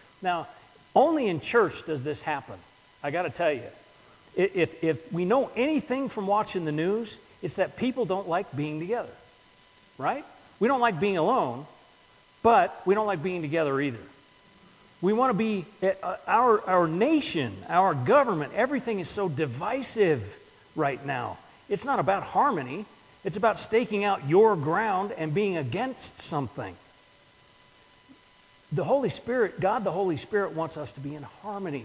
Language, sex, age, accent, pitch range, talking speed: English, male, 50-69, American, 160-230 Hz, 155 wpm